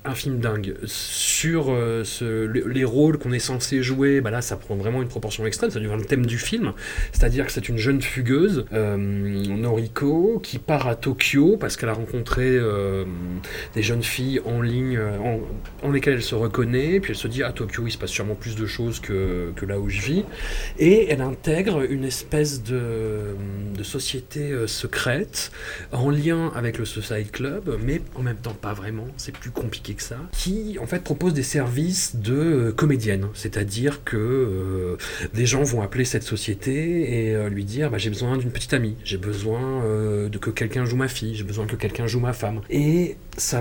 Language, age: French, 30-49